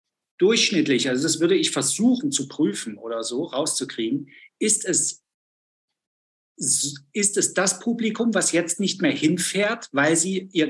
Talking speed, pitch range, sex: 140 wpm, 150-220 Hz, male